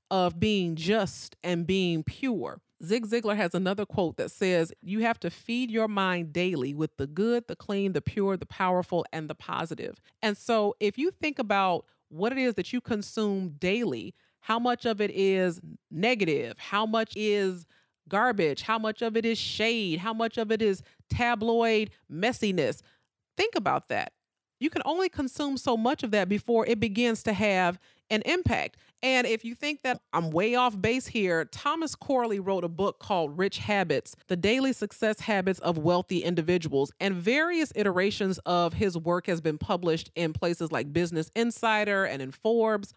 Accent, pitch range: American, 170-230 Hz